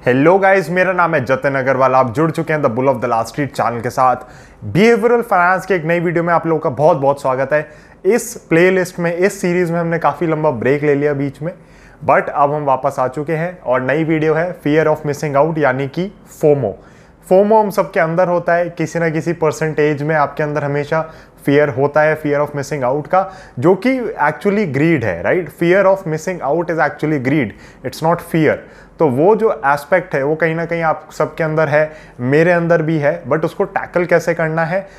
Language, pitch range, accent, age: Hindi, 150-185 Hz, native, 20-39